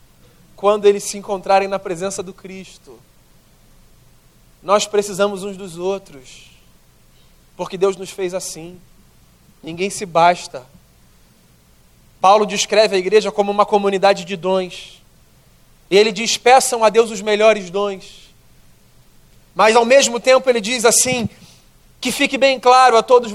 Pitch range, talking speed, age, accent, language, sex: 180-230 Hz, 130 wpm, 40-59, Brazilian, Portuguese, male